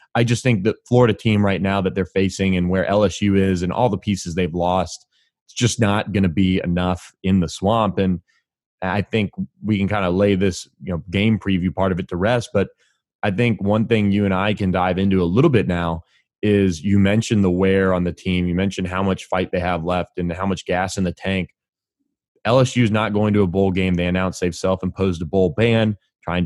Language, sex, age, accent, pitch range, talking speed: English, male, 20-39, American, 90-100 Hz, 235 wpm